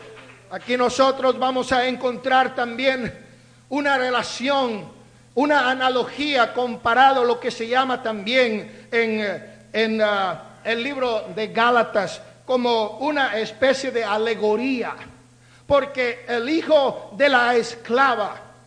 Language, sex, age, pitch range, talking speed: Spanish, male, 50-69, 225-280 Hz, 110 wpm